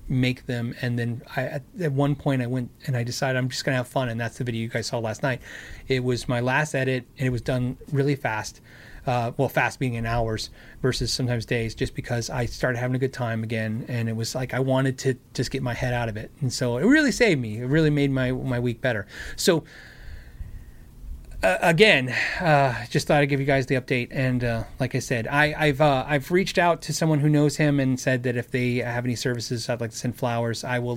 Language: English